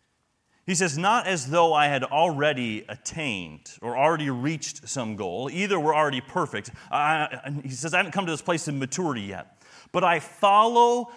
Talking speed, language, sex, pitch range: 185 wpm, English, male, 125-175 Hz